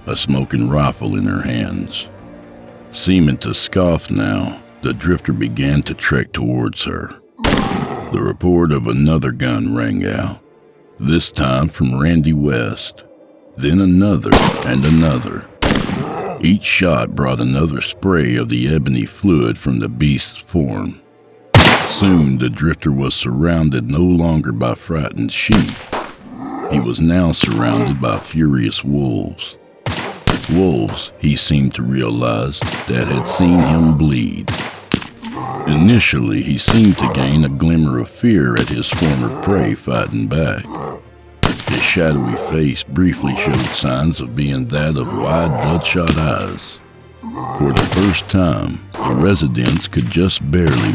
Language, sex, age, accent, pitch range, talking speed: English, male, 60-79, American, 65-85 Hz, 130 wpm